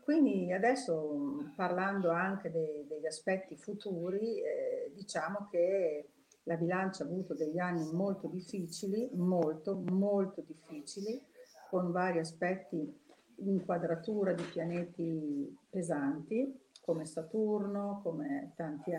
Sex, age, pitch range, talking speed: female, 50-69, 165-205 Hz, 105 wpm